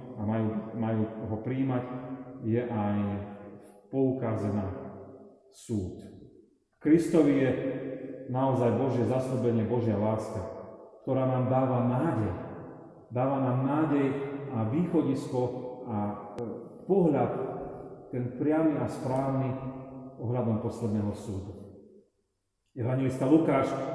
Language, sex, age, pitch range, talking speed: Slovak, male, 40-59, 120-150 Hz, 90 wpm